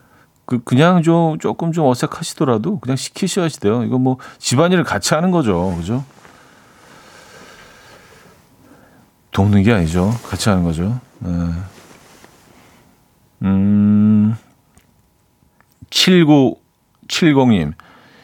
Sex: male